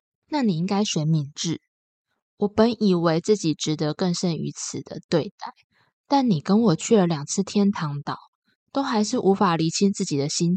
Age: 20-39